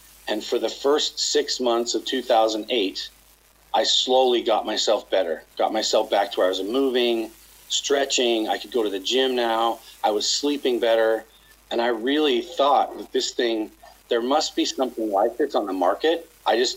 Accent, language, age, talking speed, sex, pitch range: American, English, 40-59, 185 wpm, male, 115-160 Hz